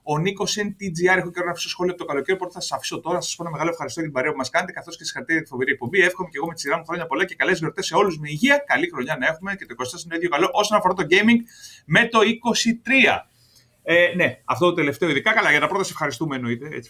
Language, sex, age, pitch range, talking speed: Greek, male, 30-49, 135-195 Hz, 280 wpm